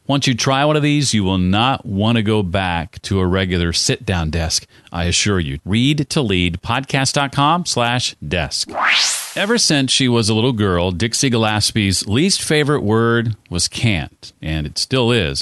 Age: 40-59